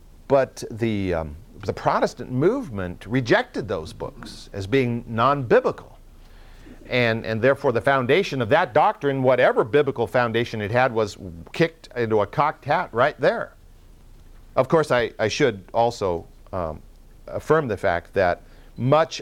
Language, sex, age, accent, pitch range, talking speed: English, male, 50-69, American, 110-185 Hz, 140 wpm